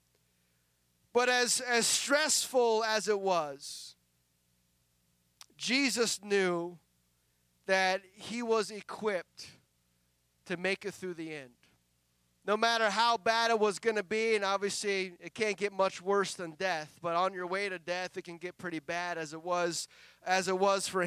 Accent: American